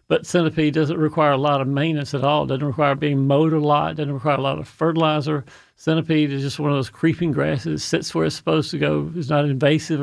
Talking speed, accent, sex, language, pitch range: 245 wpm, American, male, English, 140-155 Hz